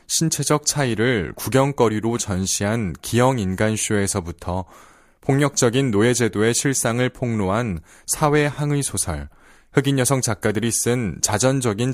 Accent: native